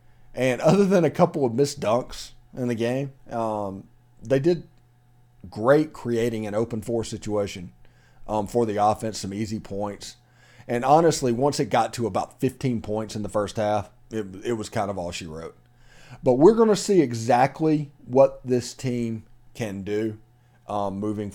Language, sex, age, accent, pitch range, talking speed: English, male, 40-59, American, 110-130 Hz, 170 wpm